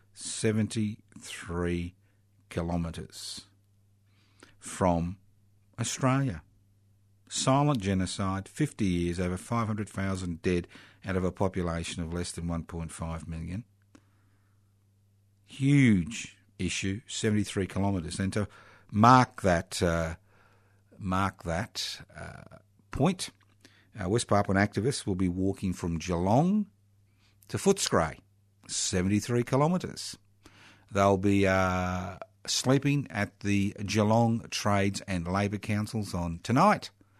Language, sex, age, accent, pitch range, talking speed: English, male, 50-69, Australian, 95-110 Hz, 100 wpm